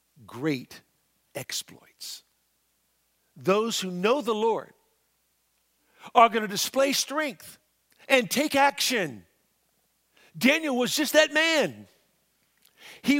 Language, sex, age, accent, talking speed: English, male, 60-79, American, 95 wpm